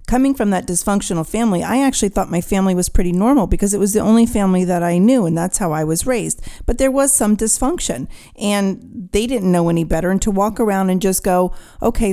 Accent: American